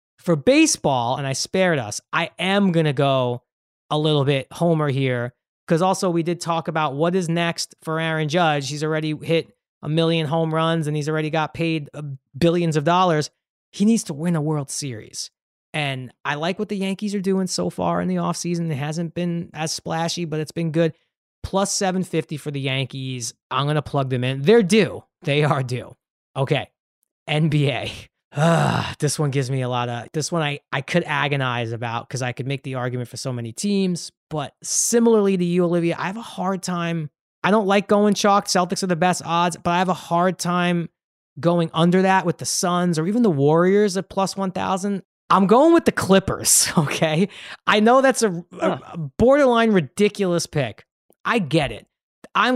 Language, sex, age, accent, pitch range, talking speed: English, male, 30-49, American, 145-190 Hz, 200 wpm